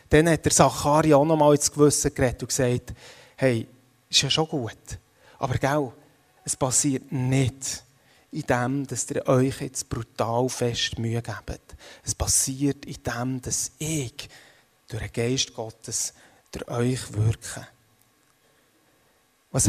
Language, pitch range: German, 120-150 Hz